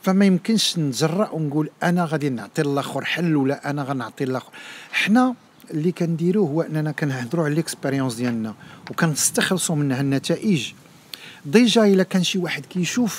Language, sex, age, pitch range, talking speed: Arabic, male, 50-69, 140-180 Hz, 140 wpm